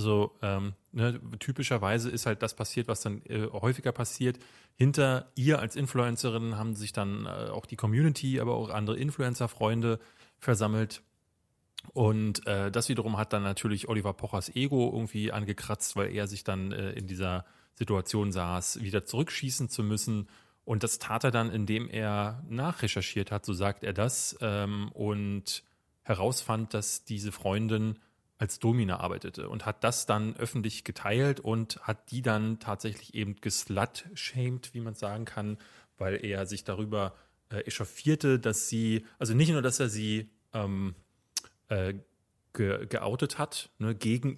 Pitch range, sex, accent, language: 105-125 Hz, male, German, German